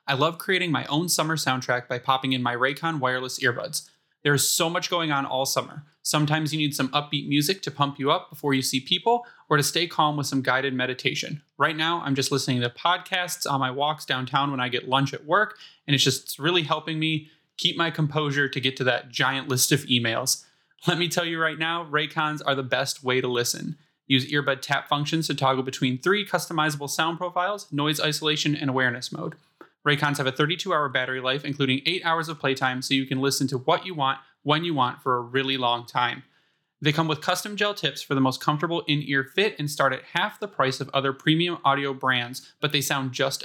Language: English